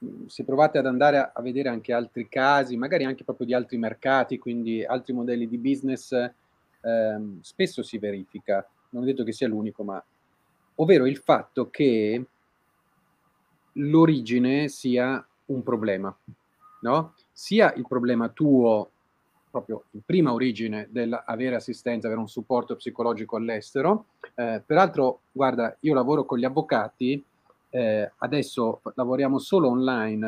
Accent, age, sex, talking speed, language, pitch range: native, 30-49, male, 135 wpm, Italian, 115-145 Hz